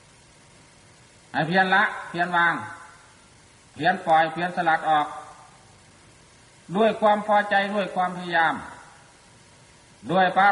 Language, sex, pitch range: Thai, male, 155-195 Hz